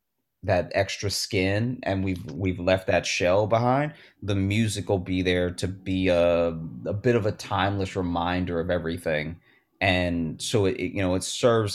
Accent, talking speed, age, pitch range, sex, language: American, 170 wpm, 30-49, 85-95 Hz, male, English